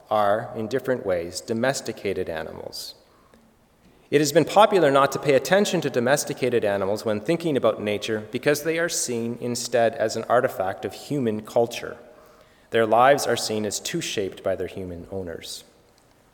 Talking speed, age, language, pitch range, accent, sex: 160 wpm, 30-49, English, 110-145 Hz, American, male